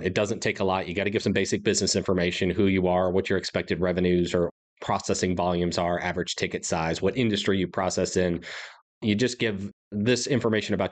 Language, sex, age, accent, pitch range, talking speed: English, male, 30-49, American, 90-110 Hz, 210 wpm